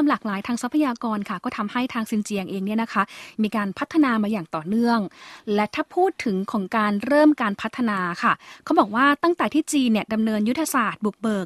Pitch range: 210-260 Hz